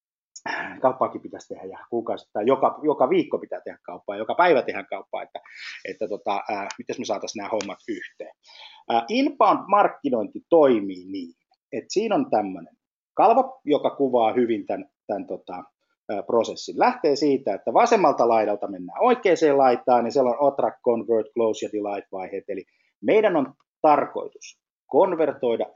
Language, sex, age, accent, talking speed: Finnish, male, 30-49, native, 145 wpm